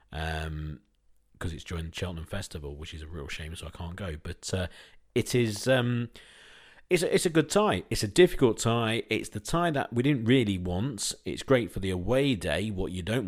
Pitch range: 90-105 Hz